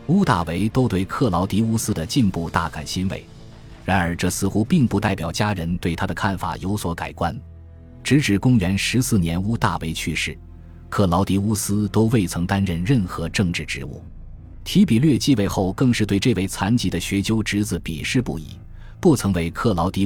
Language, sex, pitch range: Chinese, male, 85-110 Hz